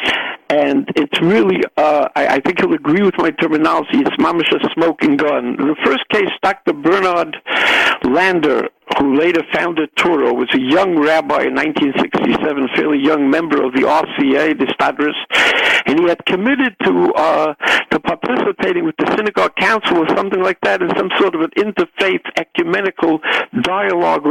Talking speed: 160 wpm